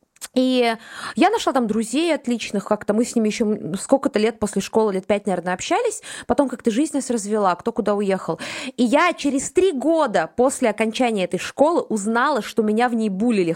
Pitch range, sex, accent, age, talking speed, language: 225-295 Hz, female, native, 20-39, 185 wpm, Russian